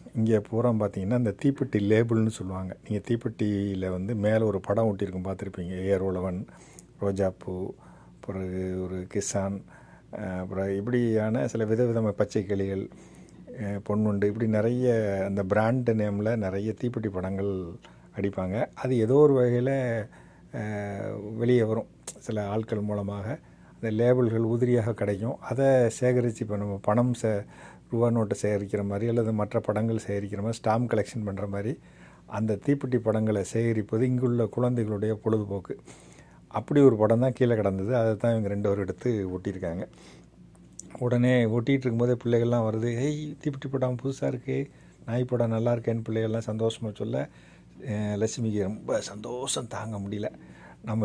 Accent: native